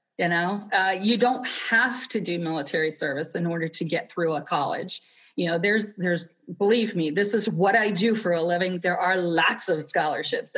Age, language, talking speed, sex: 40-59, English, 205 wpm, female